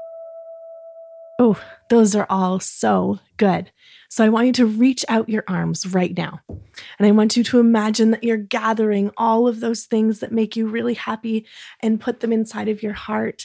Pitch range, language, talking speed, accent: 185-225 Hz, English, 185 wpm, American